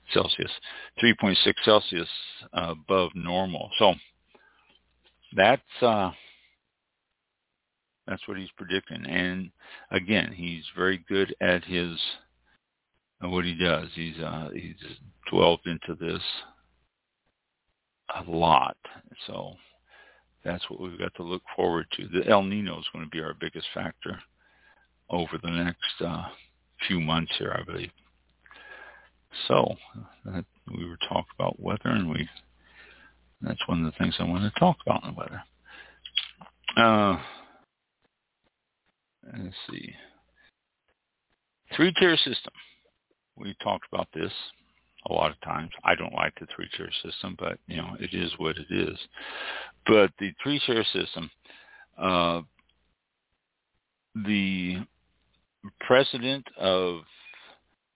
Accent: American